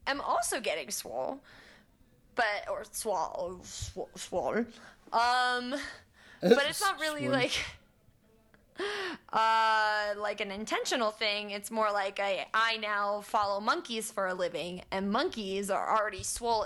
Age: 20-39